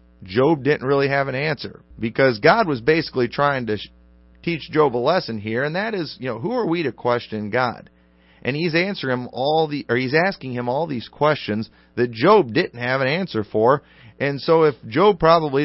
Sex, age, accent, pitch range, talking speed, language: male, 40-59, American, 100-145 Hz, 200 wpm, English